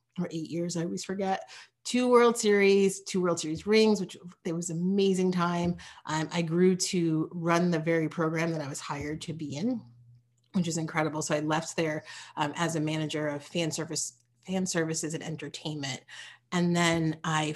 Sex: female